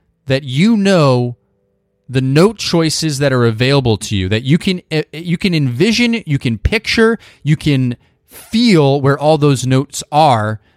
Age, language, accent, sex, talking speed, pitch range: 30-49, English, American, male, 155 wpm, 115-175 Hz